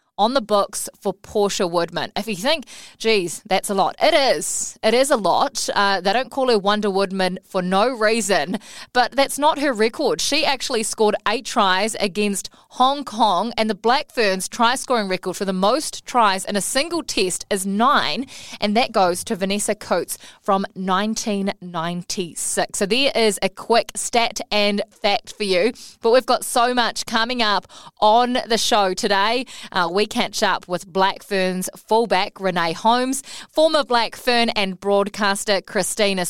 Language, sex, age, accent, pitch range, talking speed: English, female, 20-39, Australian, 190-230 Hz, 170 wpm